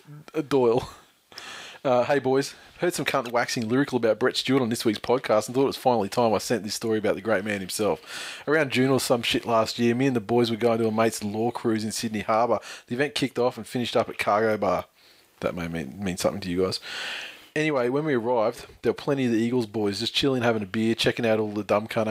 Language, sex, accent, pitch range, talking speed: English, male, Australian, 110-135 Hz, 250 wpm